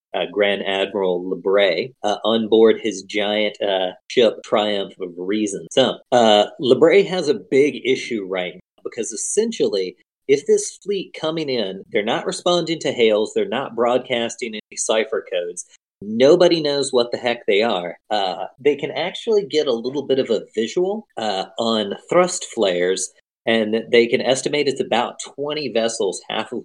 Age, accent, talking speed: 40-59, American, 165 wpm